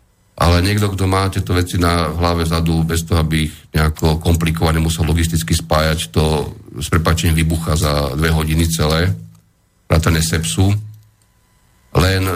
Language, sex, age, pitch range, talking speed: Slovak, male, 40-59, 80-95 Hz, 145 wpm